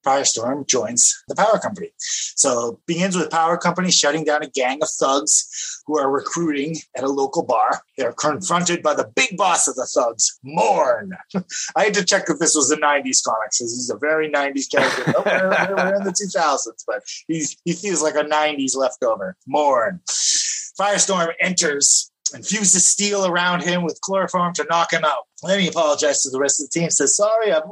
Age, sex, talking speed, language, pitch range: 30-49, male, 195 wpm, English, 145-190 Hz